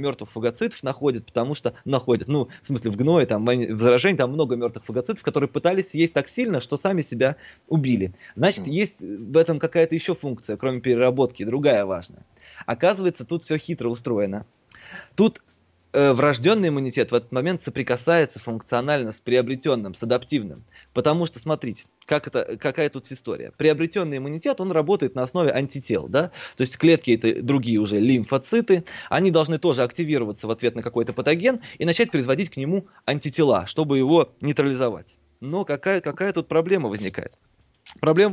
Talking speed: 155 wpm